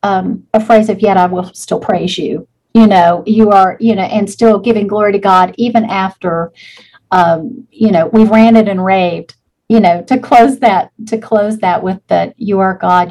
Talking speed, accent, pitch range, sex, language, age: 205 wpm, American, 180-225 Hz, female, English, 40-59